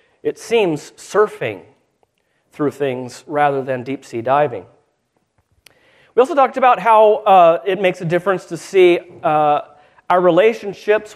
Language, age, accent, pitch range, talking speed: English, 40-59, American, 150-215 Hz, 130 wpm